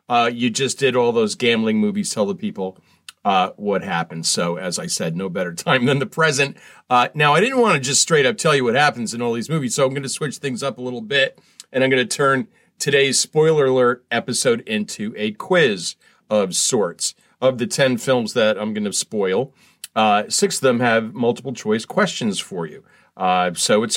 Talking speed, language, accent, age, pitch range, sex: 215 wpm, English, American, 40-59, 120-200 Hz, male